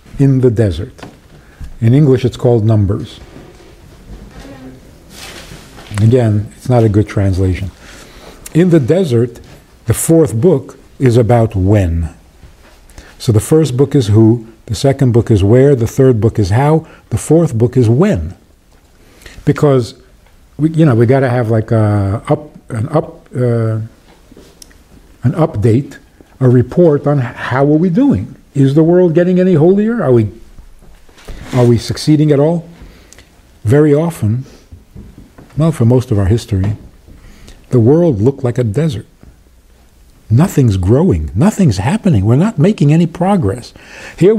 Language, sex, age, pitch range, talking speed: English, male, 50-69, 105-150 Hz, 140 wpm